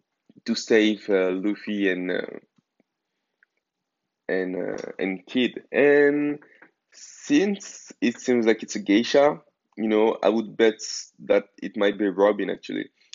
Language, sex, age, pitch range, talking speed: English, male, 20-39, 100-135 Hz, 130 wpm